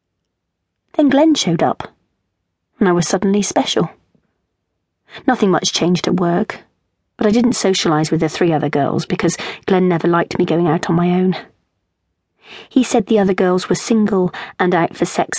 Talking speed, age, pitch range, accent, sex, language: 170 wpm, 30-49, 150-200 Hz, British, female, English